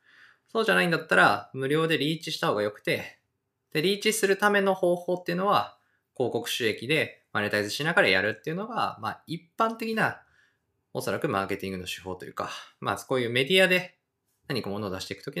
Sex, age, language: male, 20-39, Japanese